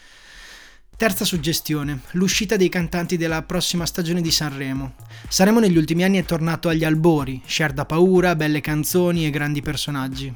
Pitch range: 145-175 Hz